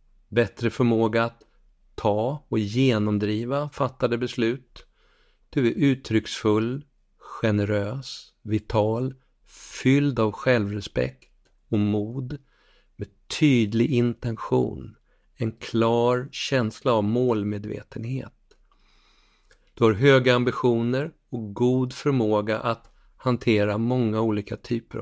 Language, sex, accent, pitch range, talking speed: Swedish, male, native, 110-125 Hz, 90 wpm